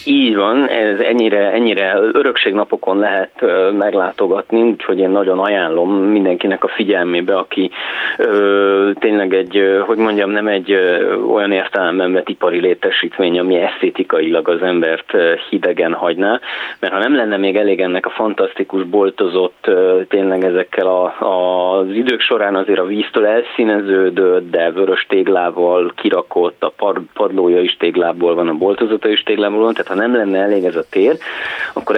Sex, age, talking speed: male, 30-49, 155 wpm